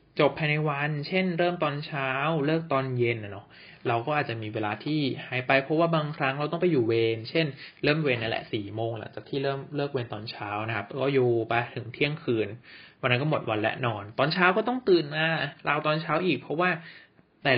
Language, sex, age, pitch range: Thai, male, 20-39, 120-160 Hz